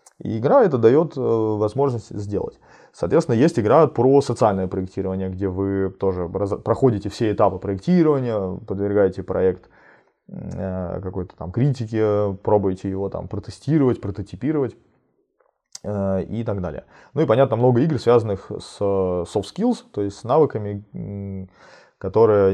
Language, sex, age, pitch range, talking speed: Russian, male, 20-39, 100-115 Hz, 120 wpm